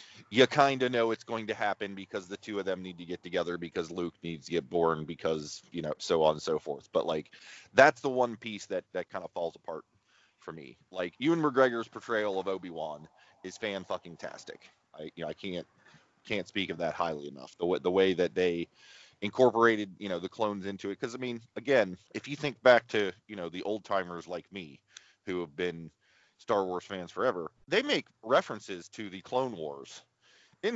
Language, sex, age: English, male, 30-49